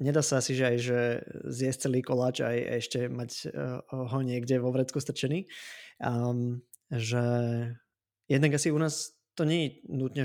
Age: 20-39